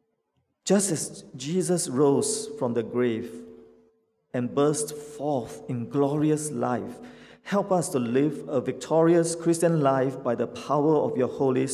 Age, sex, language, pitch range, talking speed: 40-59, male, English, 125-165 Hz, 140 wpm